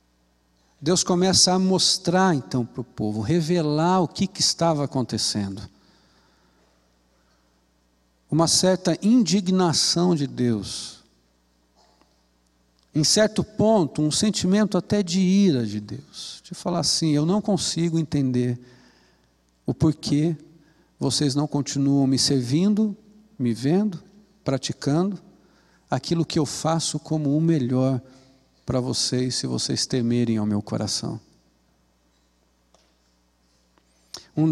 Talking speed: 110 wpm